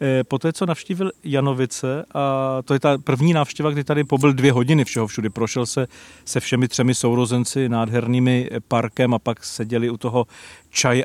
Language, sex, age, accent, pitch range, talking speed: Czech, male, 40-59, native, 115-135 Hz, 170 wpm